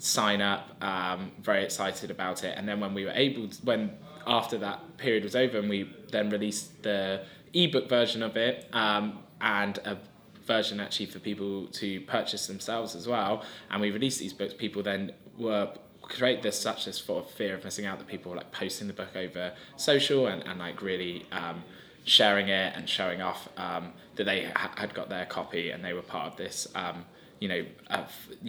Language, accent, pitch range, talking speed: English, British, 95-130 Hz, 200 wpm